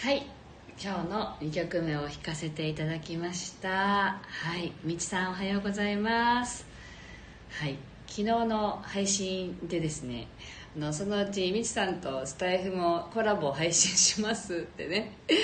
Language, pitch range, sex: Japanese, 155-230 Hz, female